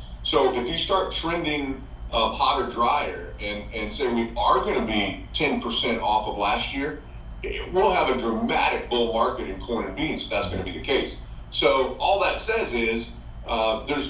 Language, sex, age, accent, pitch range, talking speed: English, male, 30-49, American, 95-140 Hz, 195 wpm